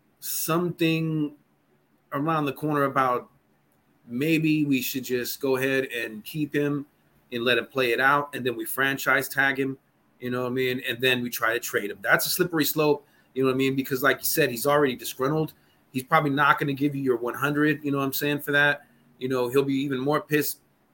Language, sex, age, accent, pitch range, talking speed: English, male, 30-49, American, 130-150 Hz, 220 wpm